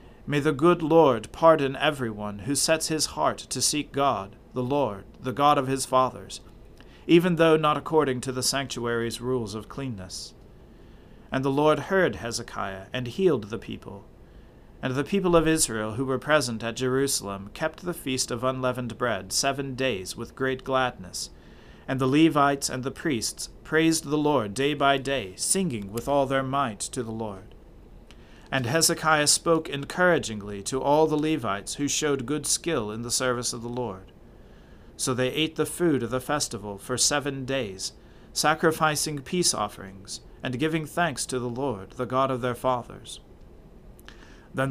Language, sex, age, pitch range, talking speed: English, male, 40-59, 115-150 Hz, 170 wpm